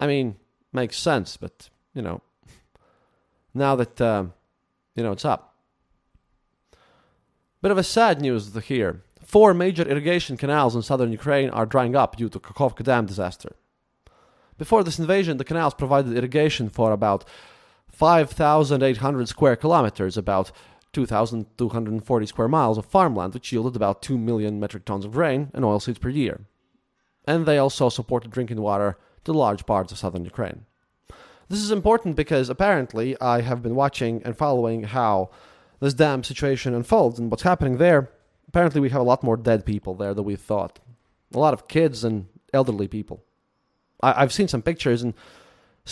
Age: 20-39